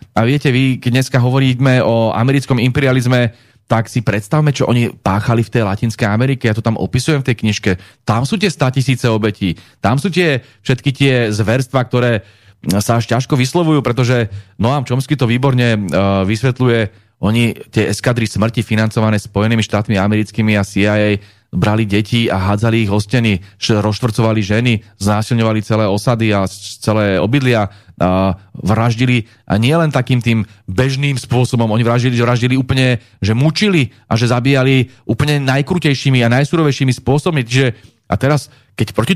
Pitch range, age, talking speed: 110-135 Hz, 30-49, 155 wpm